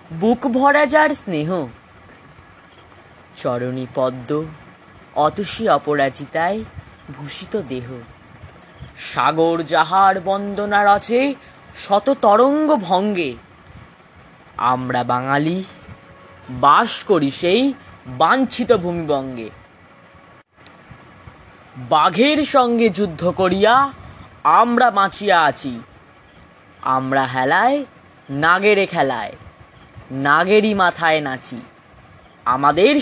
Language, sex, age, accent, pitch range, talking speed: Bengali, female, 20-39, native, 135-225 Hz, 70 wpm